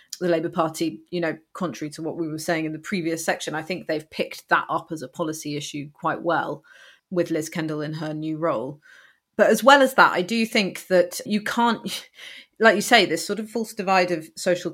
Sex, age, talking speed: female, 30-49, 225 wpm